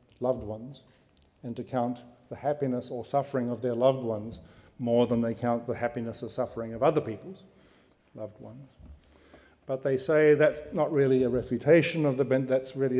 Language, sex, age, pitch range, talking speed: English, male, 50-69, 115-135 Hz, 180 wpm